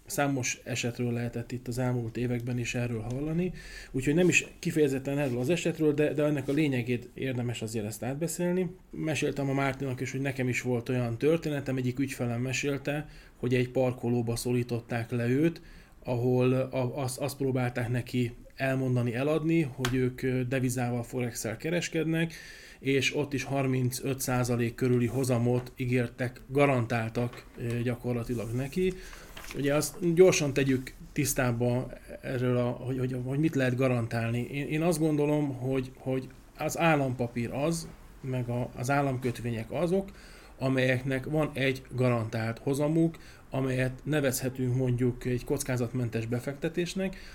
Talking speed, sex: 135 wpm, male